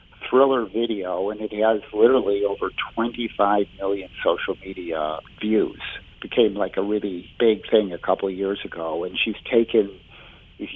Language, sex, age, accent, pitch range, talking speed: English, male, 50-69, American, 100-115 Hz, 155 wpm